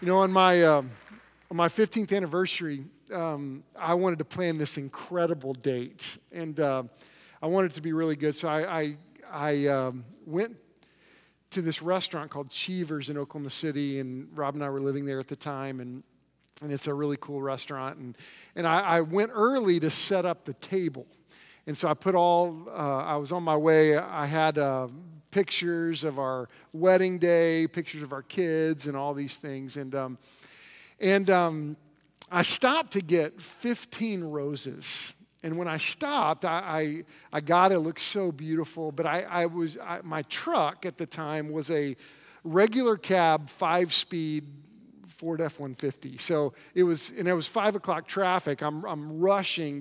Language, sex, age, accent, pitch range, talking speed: English, male, 40-59, American, 145-175 Hz, 180 wpm